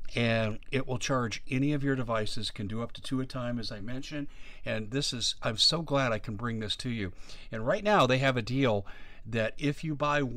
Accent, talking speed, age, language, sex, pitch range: American, 235 wpm, 50-69, English, male, 110-140 Hz